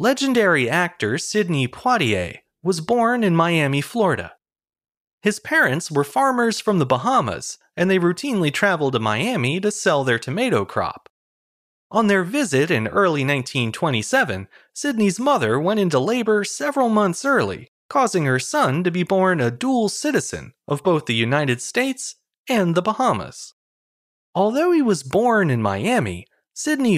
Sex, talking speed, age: male, 145 wpm, 30-49